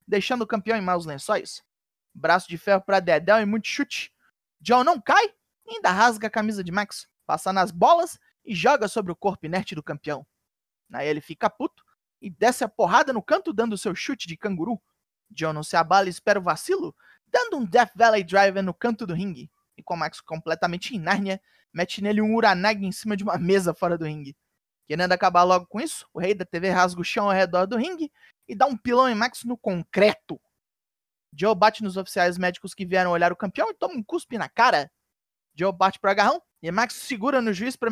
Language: Portuguese